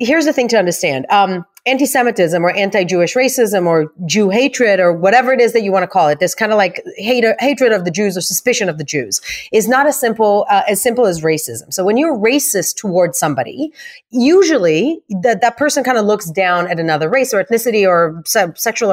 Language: English